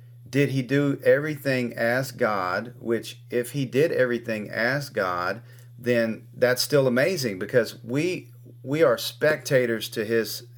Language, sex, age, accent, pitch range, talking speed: English, male, 40-59, American, 120-130 Hz, 135 wpm